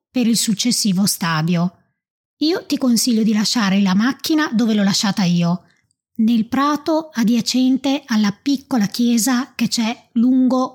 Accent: native